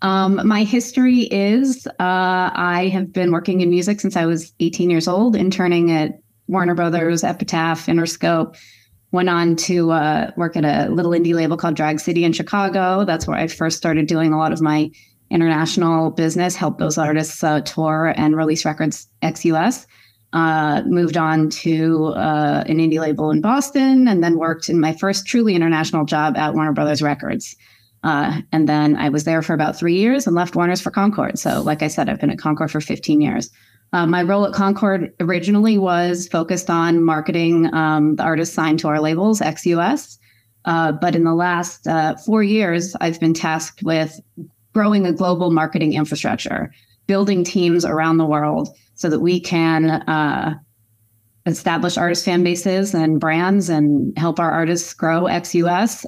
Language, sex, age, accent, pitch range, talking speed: English, female, 30-49, American, 155-180 Hz, 175 wpm